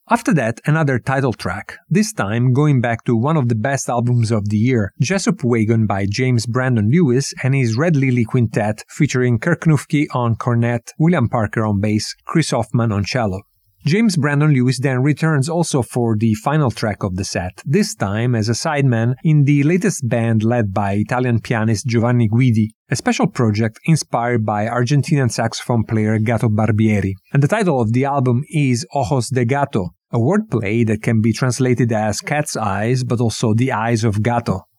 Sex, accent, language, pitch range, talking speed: male, Italian, English, 115-145 Hz, 180 wpm